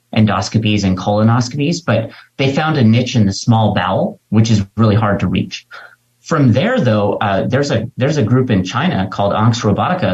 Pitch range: 105-125 Hz